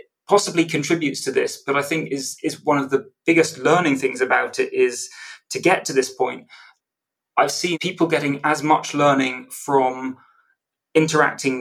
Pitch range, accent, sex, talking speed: 135-165 Hz, British, male, 165 wpm